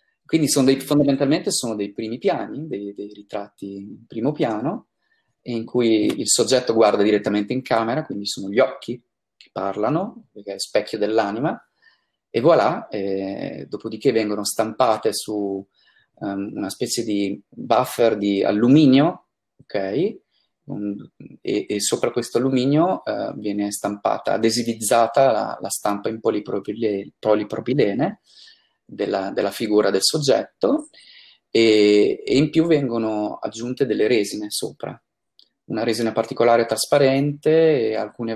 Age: 30-49